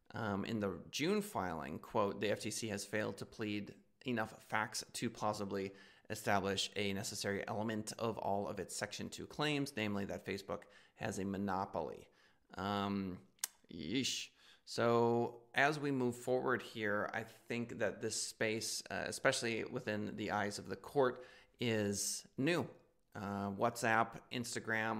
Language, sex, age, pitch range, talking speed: English, male, 20-39, 100-115 Hz, 140 wpm